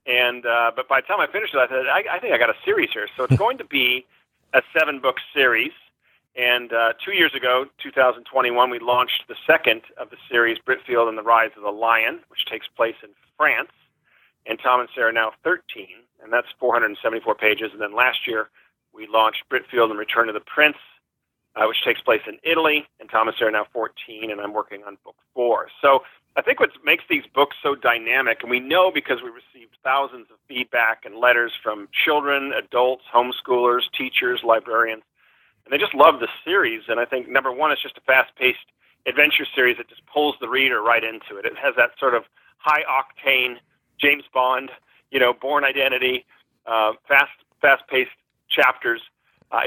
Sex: male